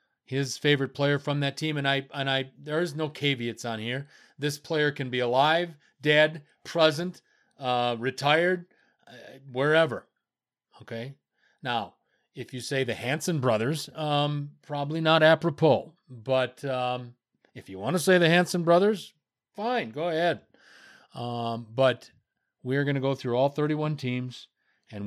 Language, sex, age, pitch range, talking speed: English, male, 40-59, 125-150 Hz, 150 wpm